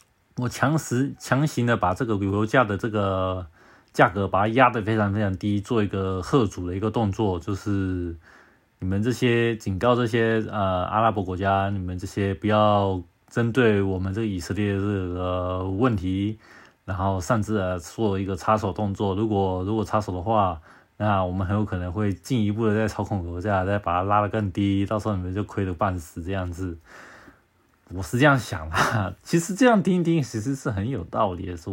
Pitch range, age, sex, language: 95-115 Hz, 20-39, male, Chinese